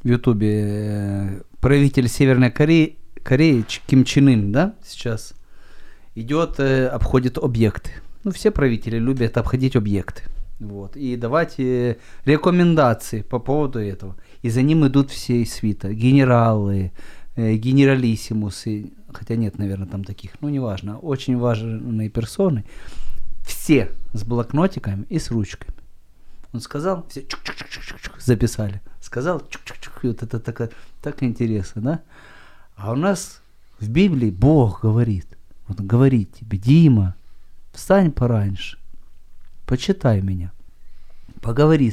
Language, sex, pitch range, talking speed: Ukrainian, male, 105-135 Hz, 110 wpm